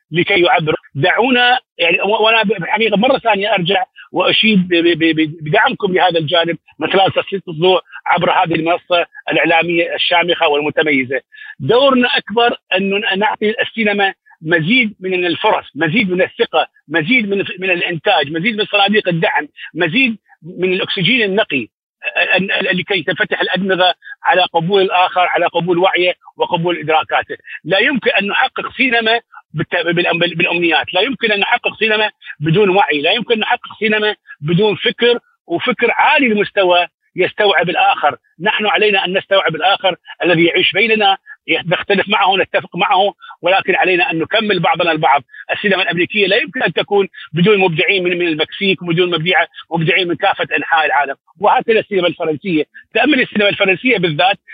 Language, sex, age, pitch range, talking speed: Arabic, male, 50-69, 175-220 Hz, 135 wpm